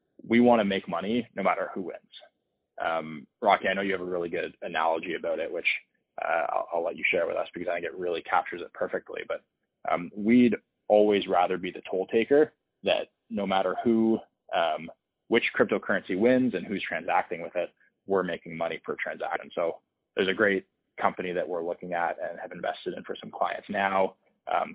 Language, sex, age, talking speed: English, male, 20-39, 200 wpm